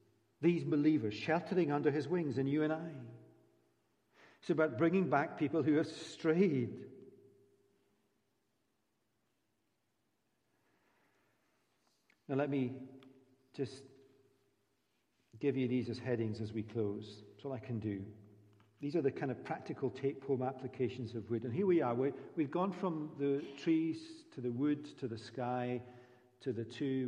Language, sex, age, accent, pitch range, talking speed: English, male, 50-69, British, 110-135 Hz, 135 wpm